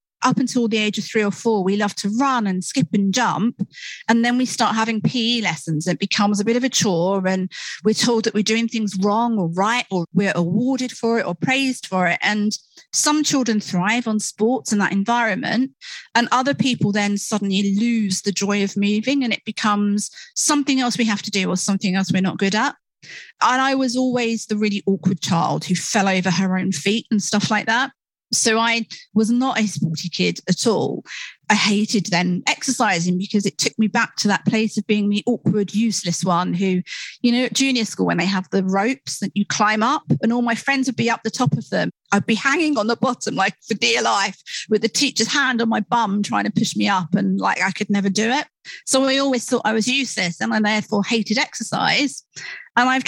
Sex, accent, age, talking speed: female, British, 40-59, 225 wpm